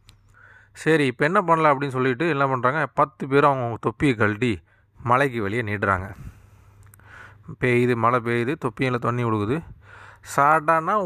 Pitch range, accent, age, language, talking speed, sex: 110-145 Hz, native, 30-49, Tamil, 125 wpm, male